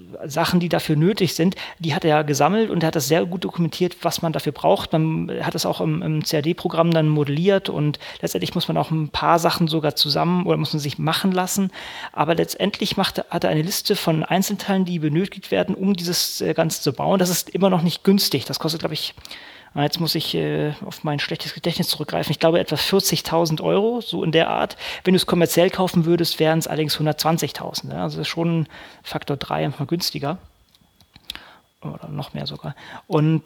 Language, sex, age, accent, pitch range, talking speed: German, male, 30-49, German, 155-180 Hz, 205 wpm